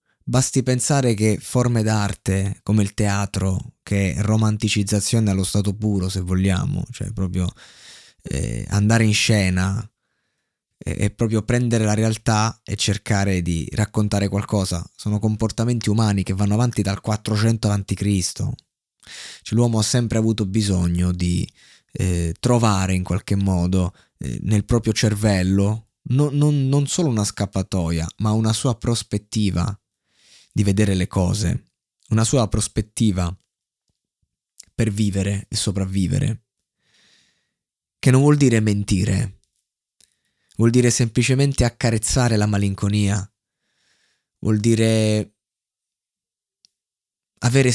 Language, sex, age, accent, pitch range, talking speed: Italian, male, 20-39, native, 100-115 Hz, 115 wpm